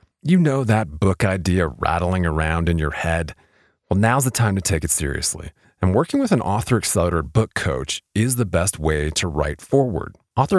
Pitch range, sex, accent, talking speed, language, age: 80-115 Hz, male, American, 195 wpm, English, 30-49